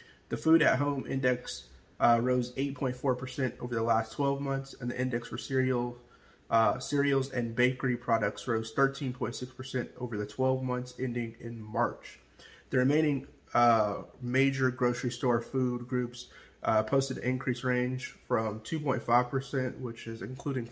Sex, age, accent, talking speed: male, 30-49, American, 140 wpm